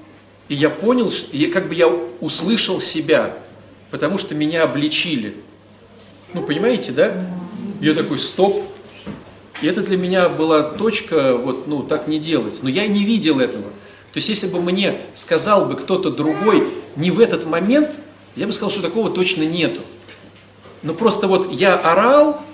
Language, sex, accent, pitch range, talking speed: Russian, male, native, 155-220 Hz, 165 wpm